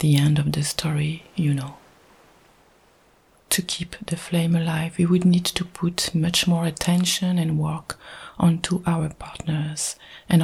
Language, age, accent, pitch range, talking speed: English, 30-49, French, 150-170 Hz, 150 wpm